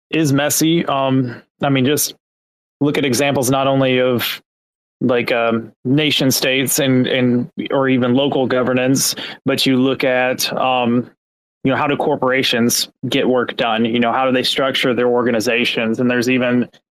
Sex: male